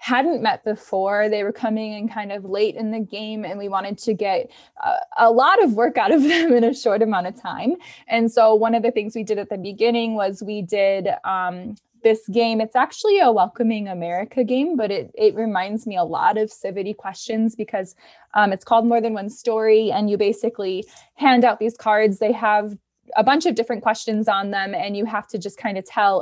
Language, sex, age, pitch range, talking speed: English, female, 20-39, 200-235 Hz, 220 wpm